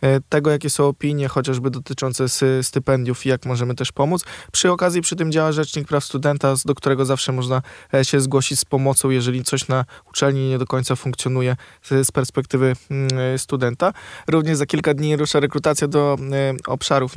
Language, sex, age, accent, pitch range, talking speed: Polish, male, 20-39, native, 130-150 Hz, 165 wpm